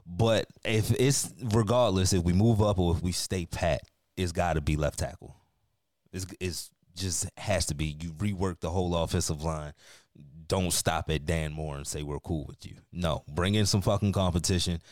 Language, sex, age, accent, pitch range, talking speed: English, male, 20-39, American, 85-105 Hz, 195 wpm